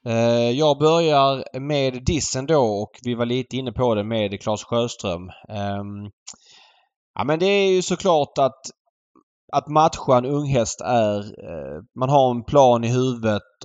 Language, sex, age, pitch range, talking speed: Swedish, male, 20-39, 110-130 Hz, 140 wpm